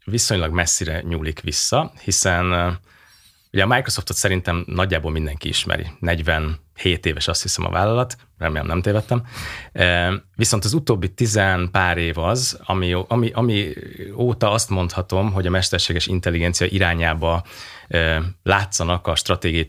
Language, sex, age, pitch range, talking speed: English, male, 30-49, 85-100 Hz, 130 wpm